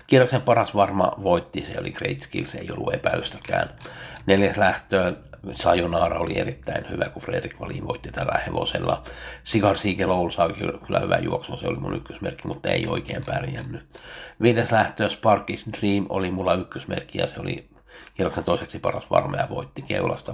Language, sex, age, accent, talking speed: Finnish, male, 60-79, native, 155 wpm